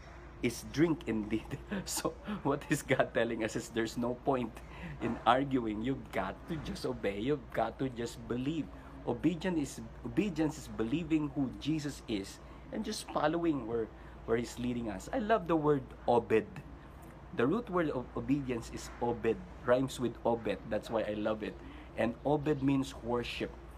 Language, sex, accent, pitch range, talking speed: Filipino, male, native, 110-150 Hz, 165 wpm